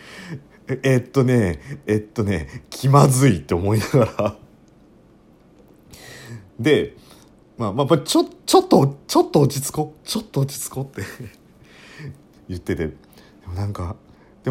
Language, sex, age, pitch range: Japanese, male, 40-59, 95-145 Hz